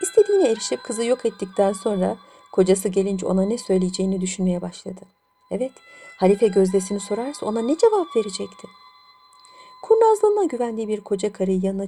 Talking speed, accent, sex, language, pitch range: 135 wpm, native, female, Turkish, 190-285 Hz